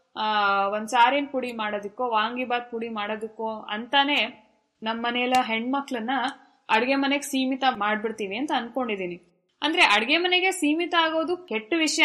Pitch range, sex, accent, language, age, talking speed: 210-280 Hz, female, native, Kannada, 20-39, 125 wpm